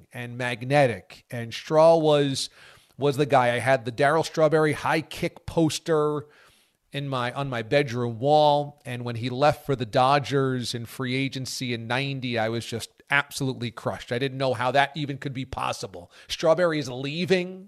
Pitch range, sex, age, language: 125-160 Hz, male, 40-59, English